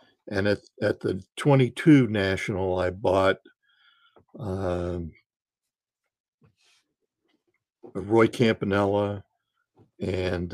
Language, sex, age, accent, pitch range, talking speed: English, male, 60-79, American, 90-120 Hz, 70 wpm